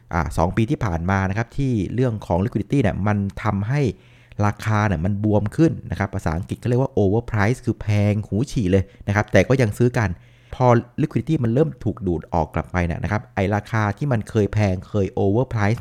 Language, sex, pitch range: Thai, male, 95-120 Hz